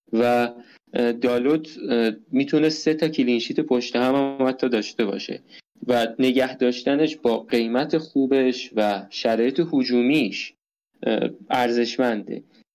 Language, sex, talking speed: Persian, male, 110 wpm